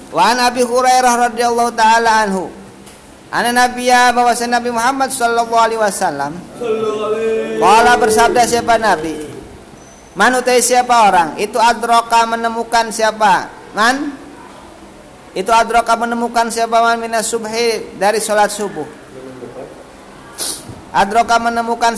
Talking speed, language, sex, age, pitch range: 105 wpm, Indonesian, male, 50-69, 200-235 Hz